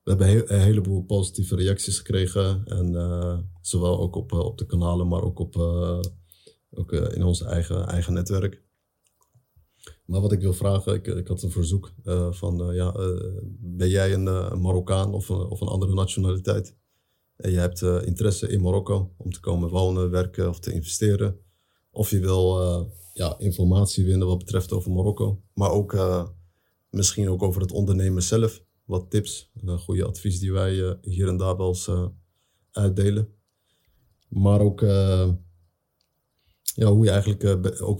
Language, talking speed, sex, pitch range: Dutch, 160 wpm, male, 90-100 Hz